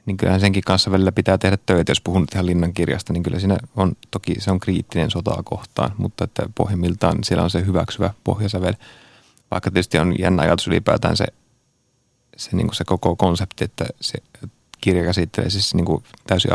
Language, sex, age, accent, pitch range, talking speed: Finnish, male, 30-49, native, 90-105 Hz, 190 wpm